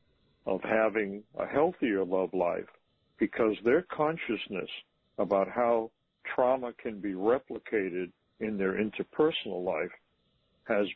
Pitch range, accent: 100-150 Hz, American